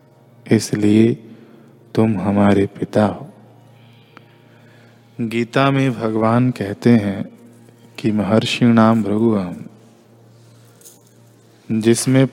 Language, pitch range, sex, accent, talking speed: Hindi, 115-120 Hz, male, native, 75 wpm